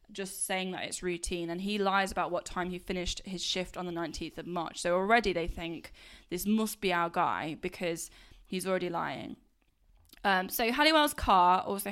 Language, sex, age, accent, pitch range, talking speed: English, female, 10-29, British, 175-195 Hz, 190 wpm